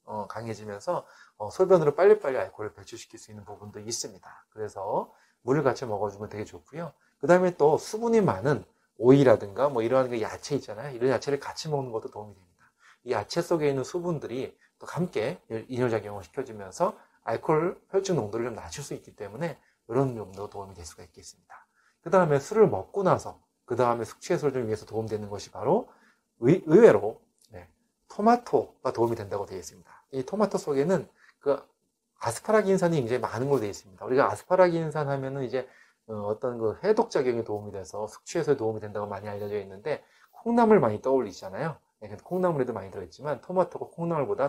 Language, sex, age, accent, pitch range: Korean, male, 30-49, native, 105-170 Hz